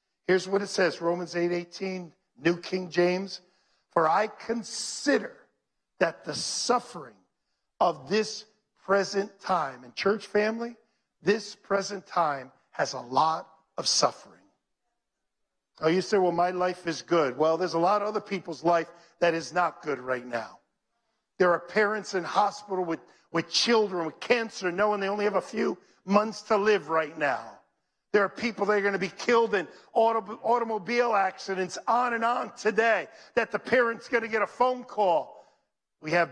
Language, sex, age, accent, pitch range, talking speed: English, male, 50-69, American, 180-235 Hz, 165 wpm